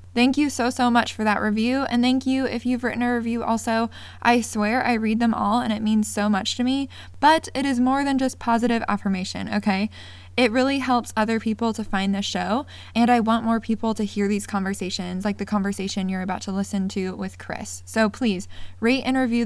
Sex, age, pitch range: female, 20-39, 190-230 Hz